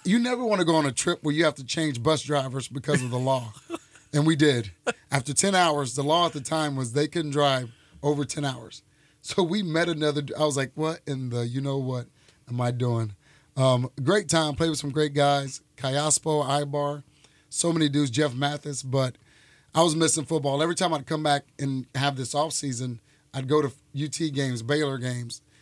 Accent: American